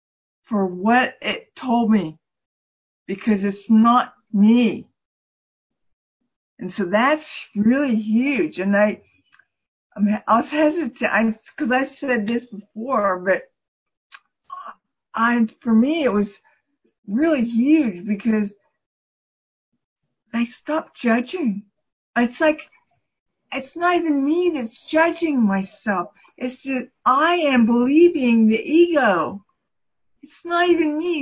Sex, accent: female, American